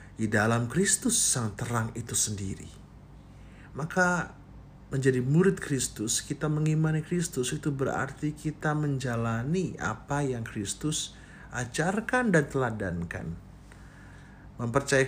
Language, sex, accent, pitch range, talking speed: Indonesian, male, native, 110-155 Hz, 100 wpm